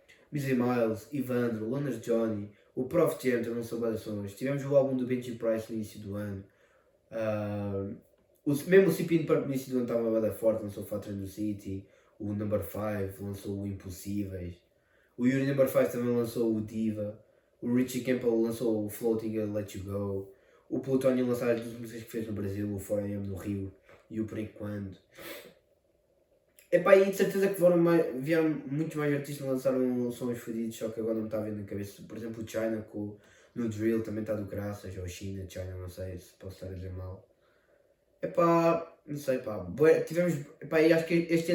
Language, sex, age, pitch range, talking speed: Portuguese, male, 20-39, 105-150 Hz, 195 wpm